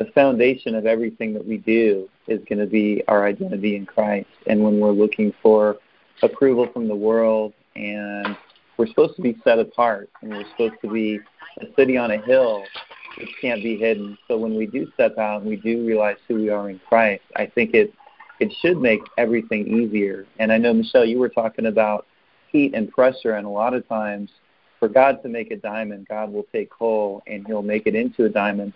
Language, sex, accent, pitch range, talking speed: English, male, American, 105-115 Hz, 210 wpm